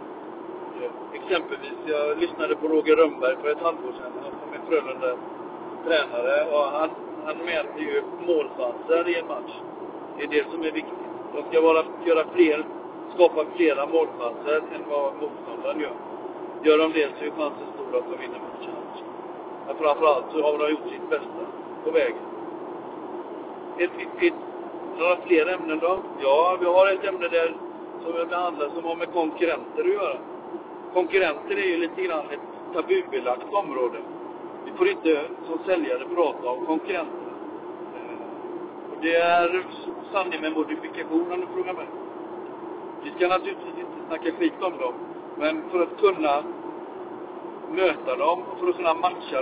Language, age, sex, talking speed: Swedish, 60-79, male, 155 wpm